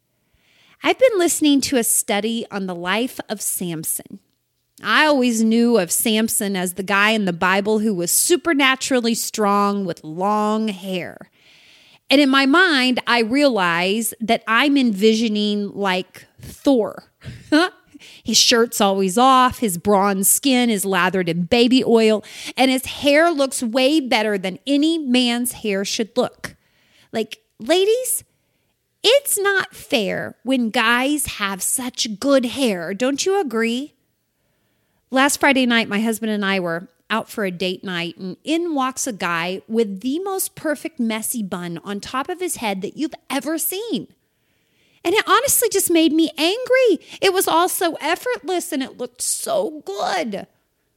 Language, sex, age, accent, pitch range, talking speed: English, female, 30-49, American, 205-290 Hz, 150 wpm